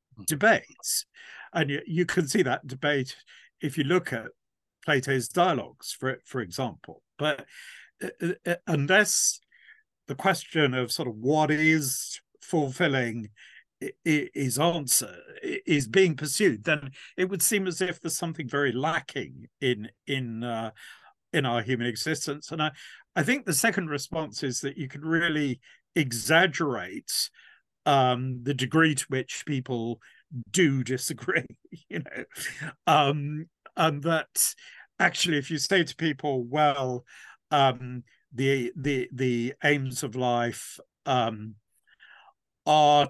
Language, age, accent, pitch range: English, 50-69, British, 130-165 Hz